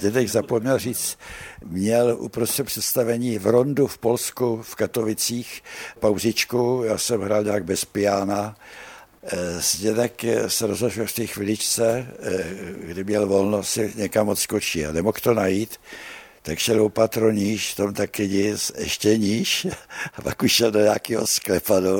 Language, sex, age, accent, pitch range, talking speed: Czech, male, 60-79, native, 100-120 Hz, 135 wpm